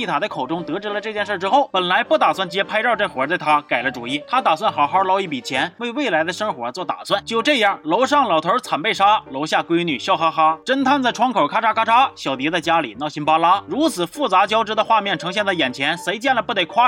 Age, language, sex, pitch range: 20-39, Chinese, male, 180-245 Hz